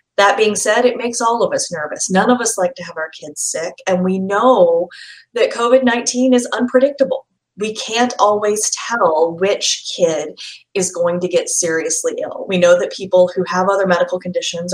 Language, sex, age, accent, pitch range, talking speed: English, female, 30-49, American, 180-250 Hz, 185 wpm